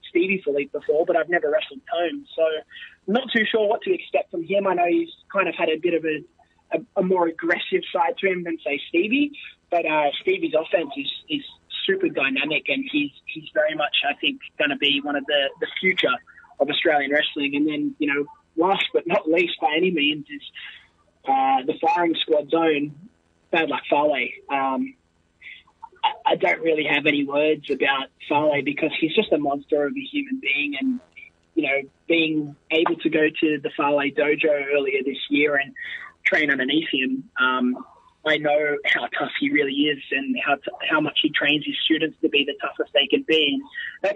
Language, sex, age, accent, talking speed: English, male, 20-39, Australian, 195 wpm